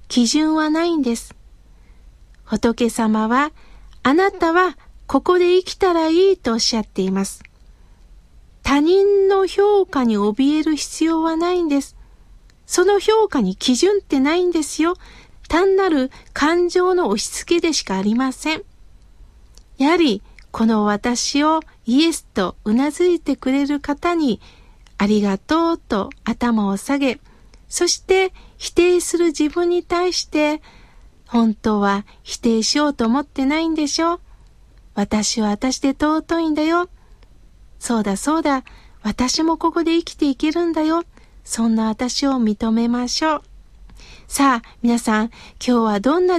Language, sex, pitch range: Japanese, female, 225-320 Hz